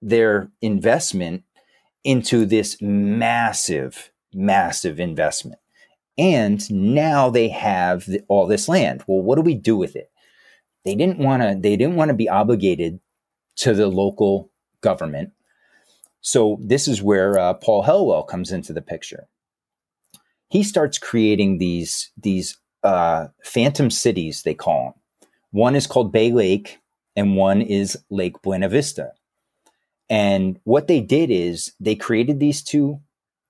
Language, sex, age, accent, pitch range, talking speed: English, male, 30-49, American, 100-140 Hz, 140 wpm